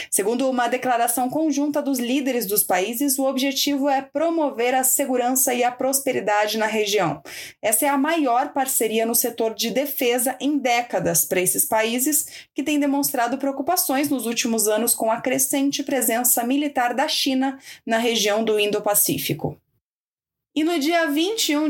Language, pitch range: Portuguese, 230-280 Hz